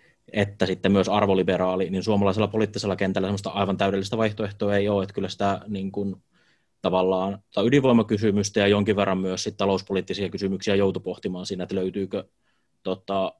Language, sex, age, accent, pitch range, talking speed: Finnish, male, 20-39, native, 95-110 Hz, 150 wpm